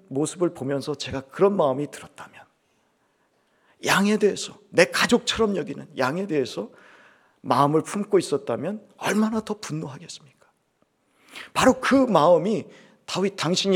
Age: 50-69